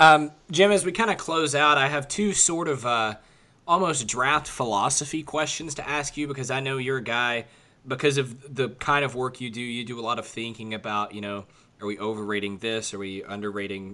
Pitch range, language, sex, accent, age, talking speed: 110-145 Hz, English, male, American, 20-39, 220 wpm